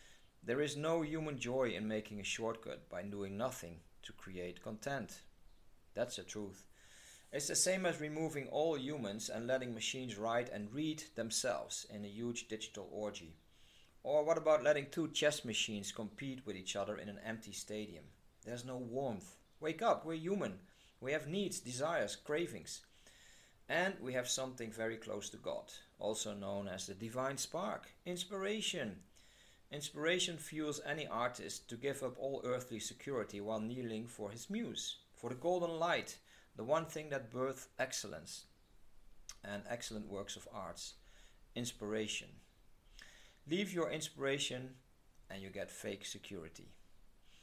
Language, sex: English, male